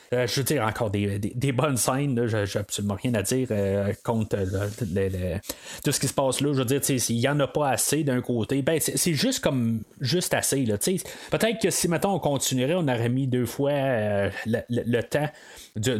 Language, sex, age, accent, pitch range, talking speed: French, male, 30-49, Canadian, 120-170 Hz, 240 wpm